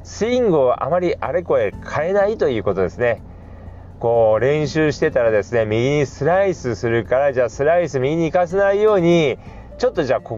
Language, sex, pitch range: Japanese, male, 105-170 Hz